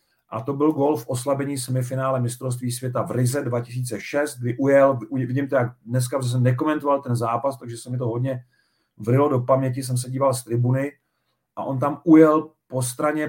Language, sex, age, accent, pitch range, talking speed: Czech, male, 40-59, native, 120-140 Hz, 190 wpm